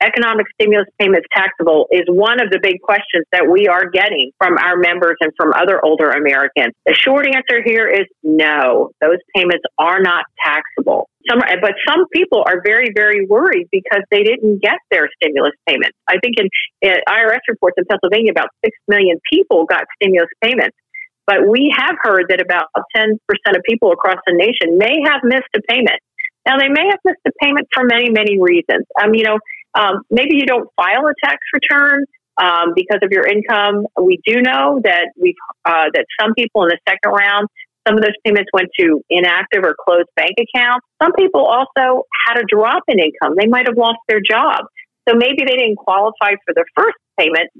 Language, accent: English, American